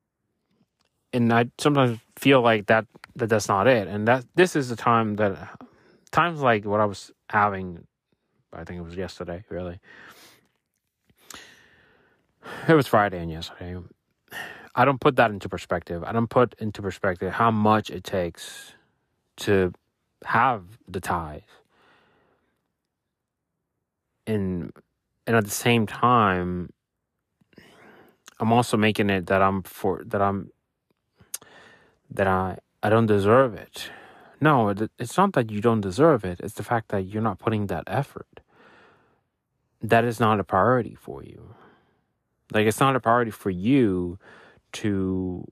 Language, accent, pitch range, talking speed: English, American, 95-115 Hz, 140 wpm